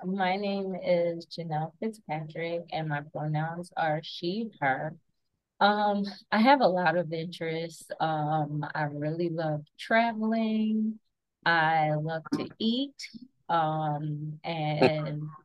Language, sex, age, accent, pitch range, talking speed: English, female, 20-39, American, 155-180 Hz, 115 wpm